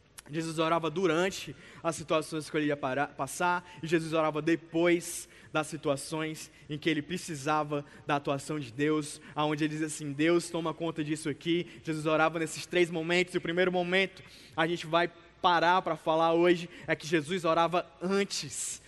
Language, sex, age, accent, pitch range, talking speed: Portuguese, male, 20-39, Brazilian, 160-215 Hz, 170 wpm